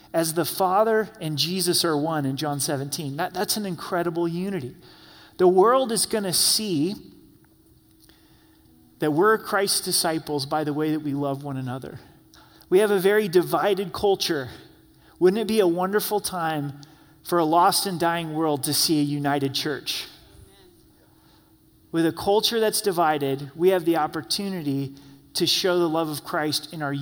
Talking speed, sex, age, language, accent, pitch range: 160 wpm, male, 30-49, English, American, 145-180 Hz